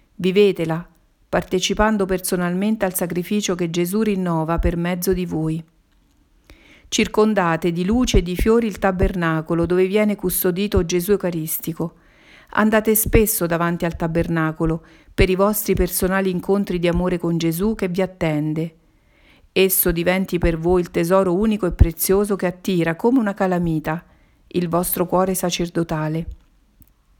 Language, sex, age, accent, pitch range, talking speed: Italian, female, 50-69, native, 170-195 Hz, 130 wpm